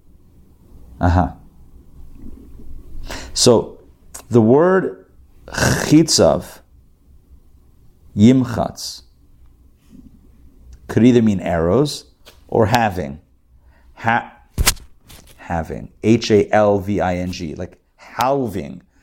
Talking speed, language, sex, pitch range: 75 wpm, English, male, 70-115 Hz